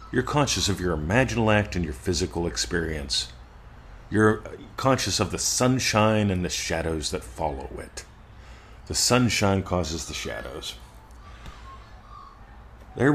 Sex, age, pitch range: male, 40-59, 85-110 Hz